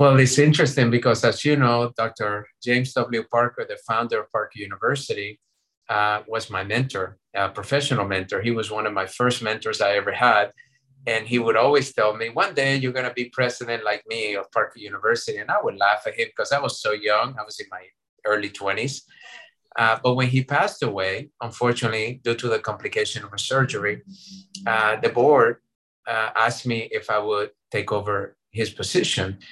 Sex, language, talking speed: male, English, 190 wpm